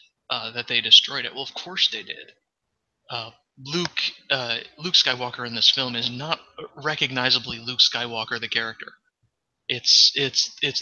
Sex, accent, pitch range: male, American, 120-145 Hz